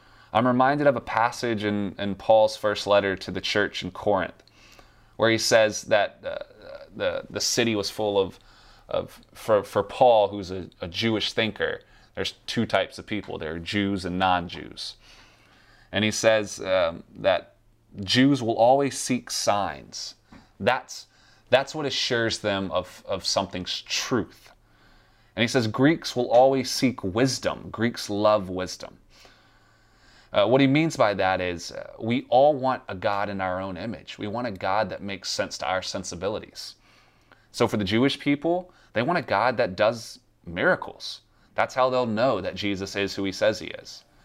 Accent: American